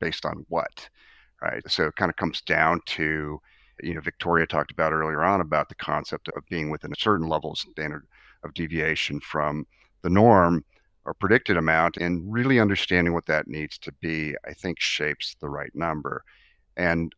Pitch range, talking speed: 75-90 Hz, 180 wpm